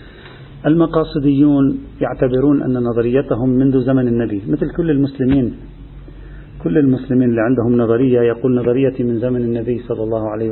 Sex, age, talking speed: male, 40-59, 130 wpm